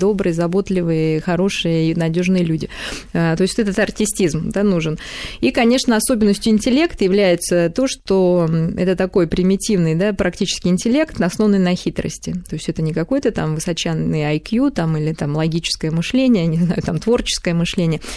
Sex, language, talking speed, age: female, Russian, 155 wpm, 20-39